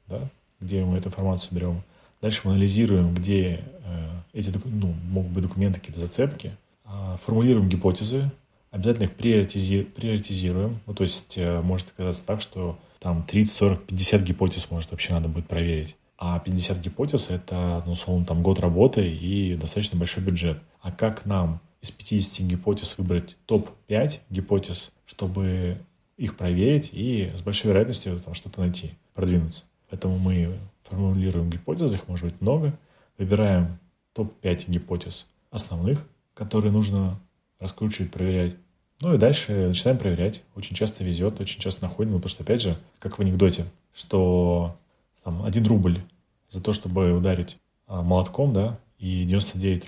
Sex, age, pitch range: male, 30-49, 90-105 Hz